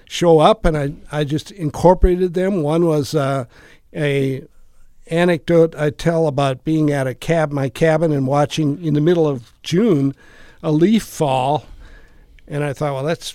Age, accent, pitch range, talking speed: 60-79, American, 140-165 Hz, 165 wpm